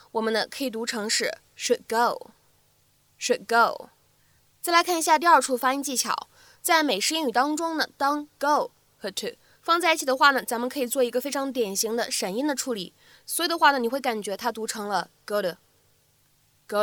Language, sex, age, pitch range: Chinese, female, 20-39, 235-310 Hz